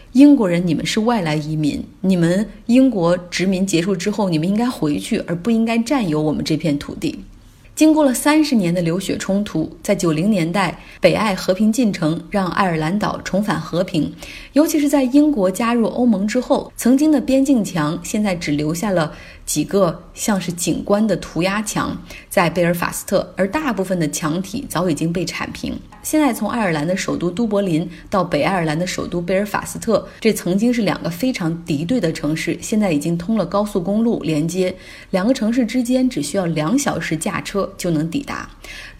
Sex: female